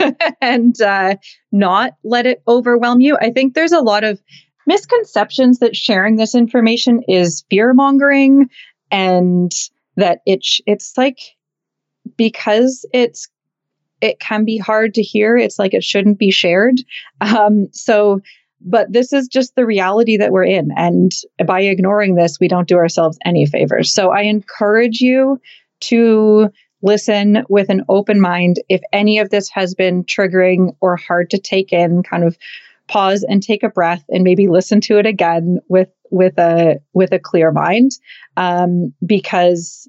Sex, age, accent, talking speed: female, 30-49, American, 160 wpm